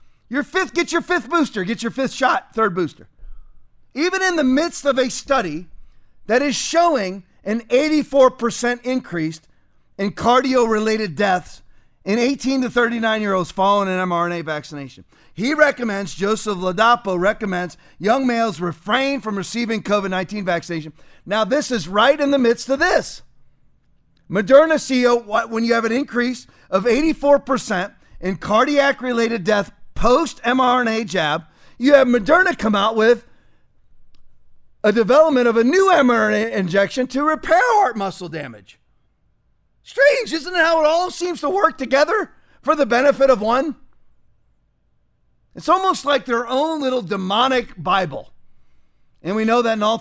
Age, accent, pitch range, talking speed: 40-59, American, 190-270 Hz, 150 wpm